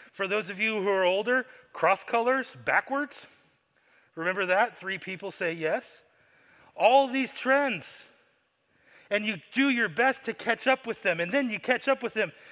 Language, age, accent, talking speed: English, 30-49, American, 175 wpm